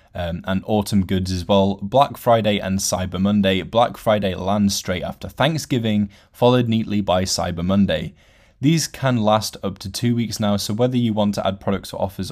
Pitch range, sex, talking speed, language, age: 95-115 Hz, male, 190 wpm, English, 10-29